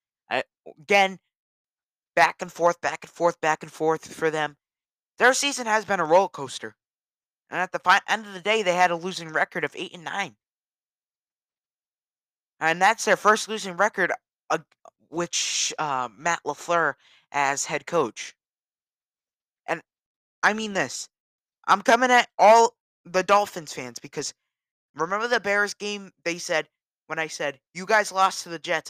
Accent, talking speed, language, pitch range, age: American, 160 wpm, English, 155-210 Hz, 20-39